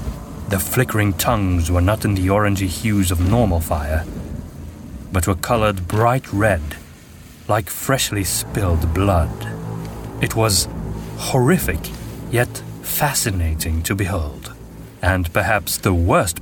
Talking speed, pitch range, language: 115 wpm, 85-120 Hz, English